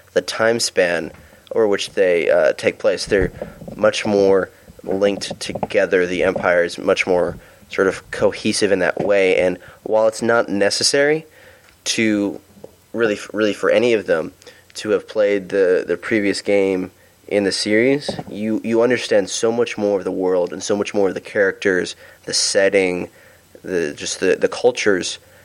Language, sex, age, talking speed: English, male, 20-39, 165 wpm